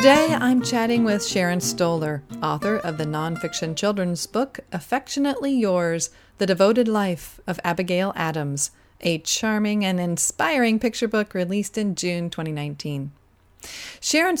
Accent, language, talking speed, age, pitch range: American, English, 130 wpm, 40-59, 165-220 Hz